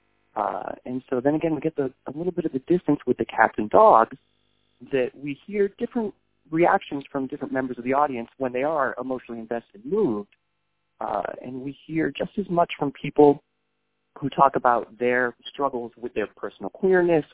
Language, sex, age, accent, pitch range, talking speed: English, male, 30-49, American, 115-155 Hz, 190 wpm